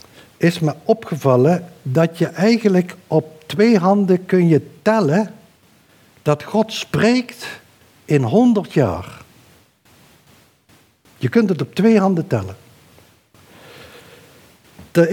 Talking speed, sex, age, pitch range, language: 105 wpm, male, 60-79, 140-195 Hz, Dutch